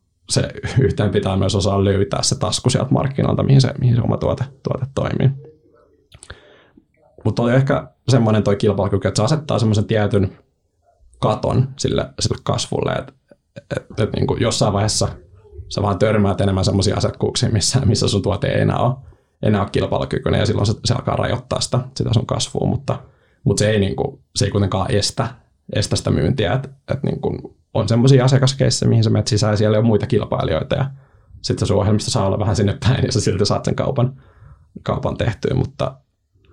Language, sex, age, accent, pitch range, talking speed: Finnish, male, 20-39, native, 100-130 Hz, 170 wpm